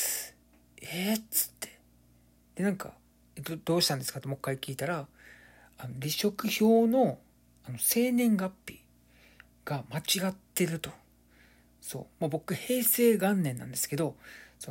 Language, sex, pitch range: Japanese, male, 125-185 Hz